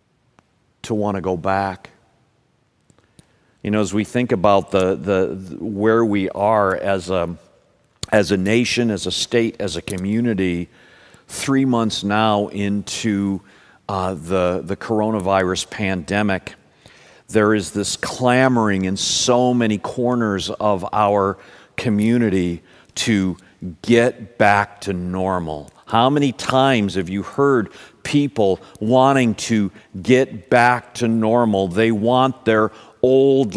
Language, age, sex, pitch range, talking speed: English, 50-69, male, 100-125 Hz, 125 wpm